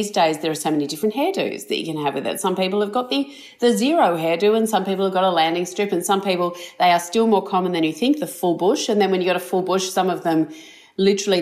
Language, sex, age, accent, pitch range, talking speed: English, female, 40-59, Australian, 165-215 Hz, 290 wpm